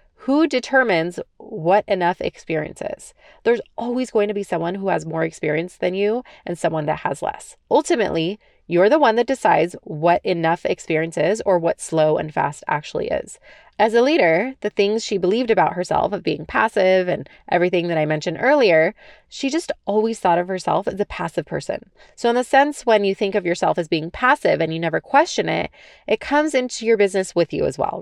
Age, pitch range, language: 20-39, 170-235 Hz, English